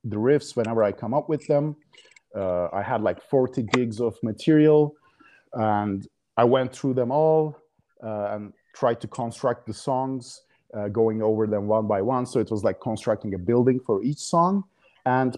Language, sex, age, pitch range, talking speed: English, male, 30-49, 105-130 Hz, 185 wpm